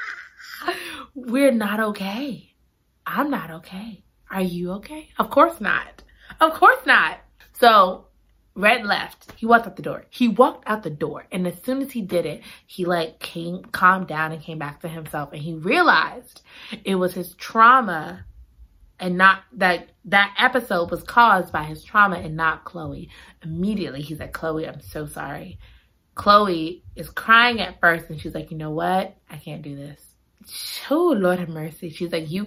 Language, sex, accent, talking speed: English, female, American, 175 wpm